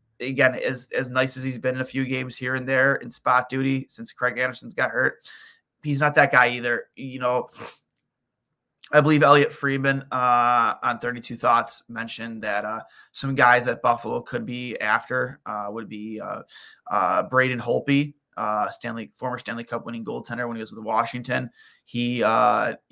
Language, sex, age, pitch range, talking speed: English, male, 20-39, 115-130 Hz, 180 wpm